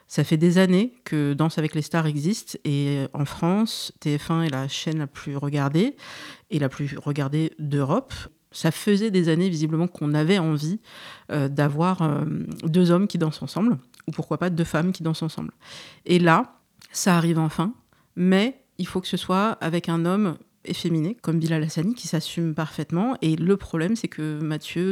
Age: 50-69